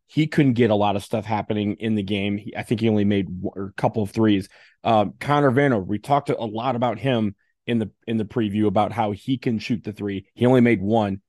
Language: English